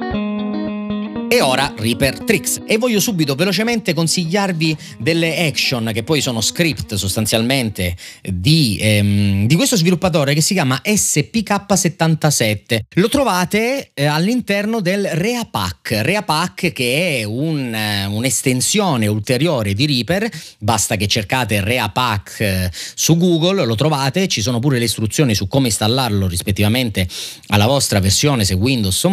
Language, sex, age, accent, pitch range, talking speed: Italian, male, 30-49, native, 115-185 Hz, 125 wpm